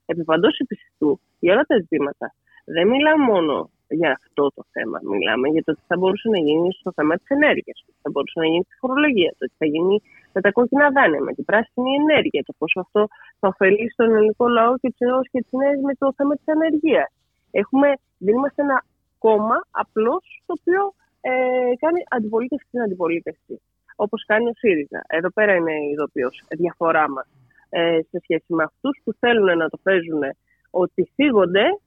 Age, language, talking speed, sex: 20-39, Greek, 180 wpm, female